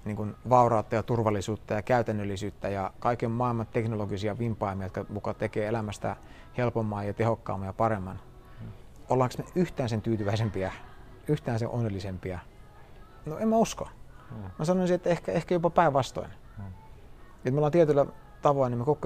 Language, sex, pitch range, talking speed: Finnish, male, 105-125 Hz, 150 wpm